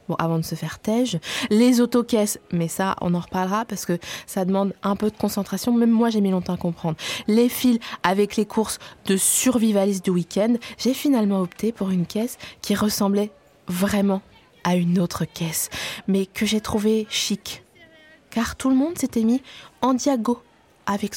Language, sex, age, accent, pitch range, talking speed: French, female, 20-39, French, 185-235 Hz, 180 wpm